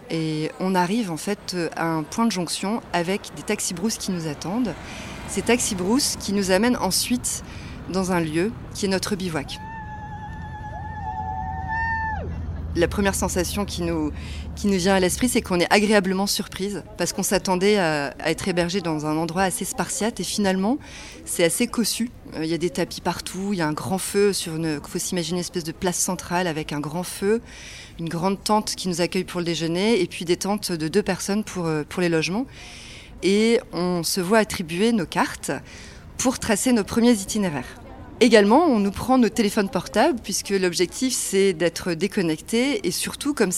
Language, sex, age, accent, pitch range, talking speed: French, female, 30-49, French, 165-210 Hz, 185 wpm